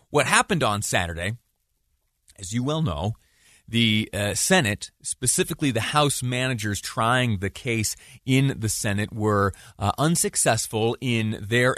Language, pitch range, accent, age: English, 100-130 Hz, American, 30-49